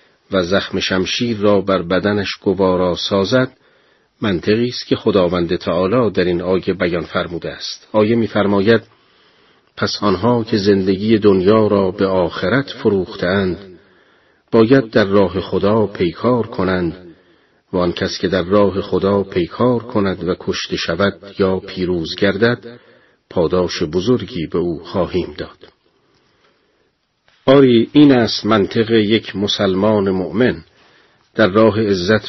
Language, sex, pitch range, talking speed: Persian, male, 95-115 Hz, 125 wpm